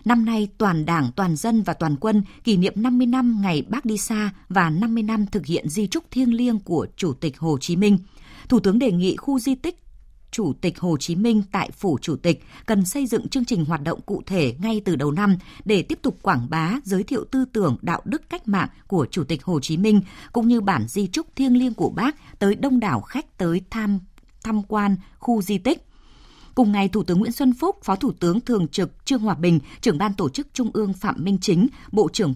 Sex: female